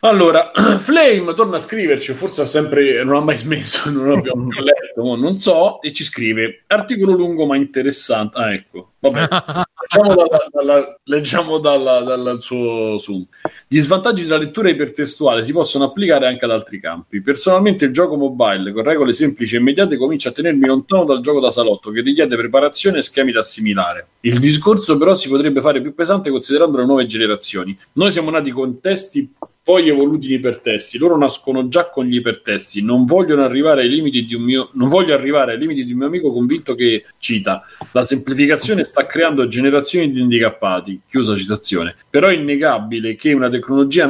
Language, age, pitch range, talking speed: Italian, 40-59, 125-170 Hz, 165 wpm